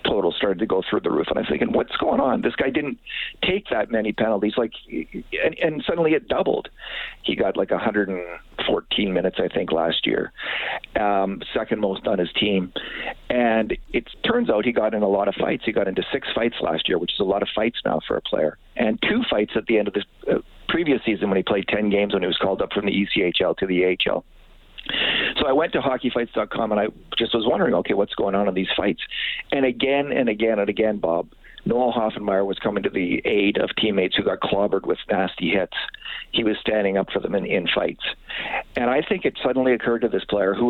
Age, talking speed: 50-69, 225 wpm